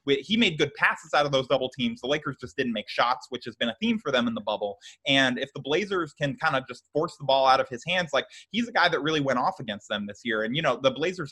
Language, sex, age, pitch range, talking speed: English, male, 20-39, 120-150 Hz, 300 wpm